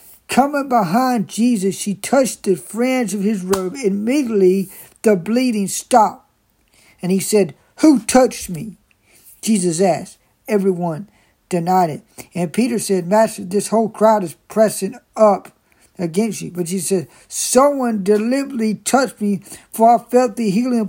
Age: 60-79